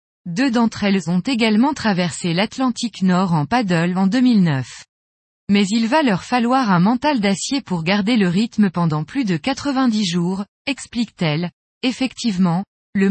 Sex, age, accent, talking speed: female, 20-39, French, 145 wpm